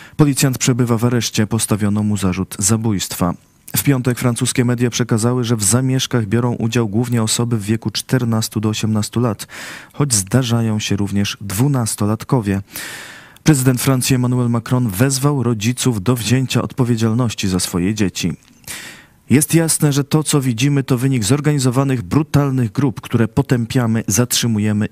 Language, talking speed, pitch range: Polish, 135 wpm, 105-125 Hz